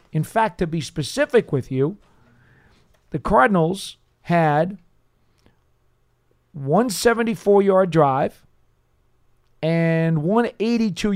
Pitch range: 150-195 Hz